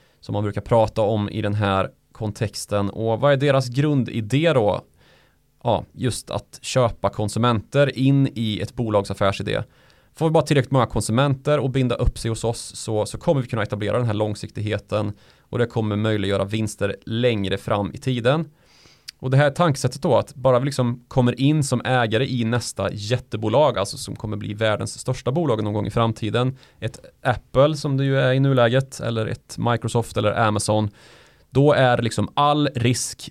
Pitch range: 105-130 Hz